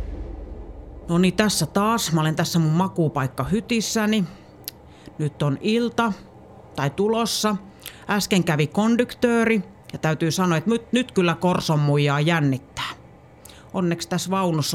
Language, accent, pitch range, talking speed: Finnish, native, 145-200 Hz, 115 wpm